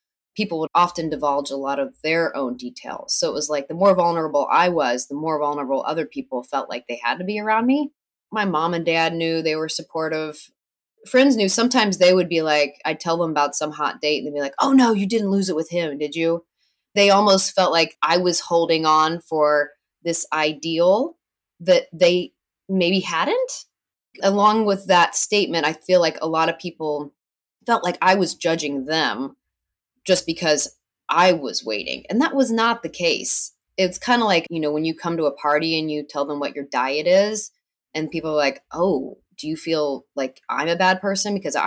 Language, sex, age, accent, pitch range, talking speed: English, female, 20-39, American, 155-210 Hz, 210 wpm